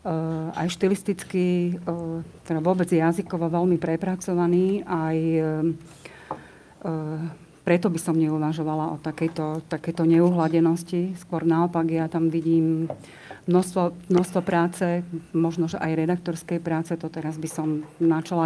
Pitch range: 160-180 Hz